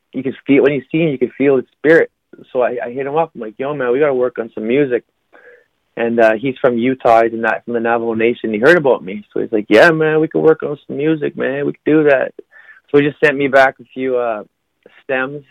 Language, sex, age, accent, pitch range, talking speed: English, male, 20-39, American, 110-130 Hz, 265 wpm